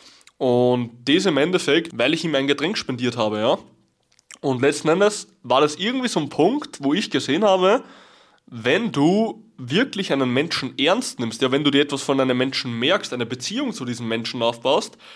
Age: 20-39